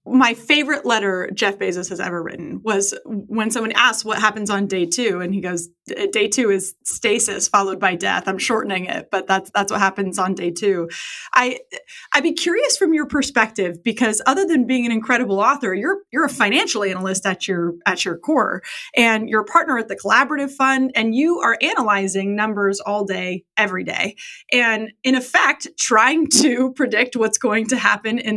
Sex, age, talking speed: female, 30-49, 190 wpm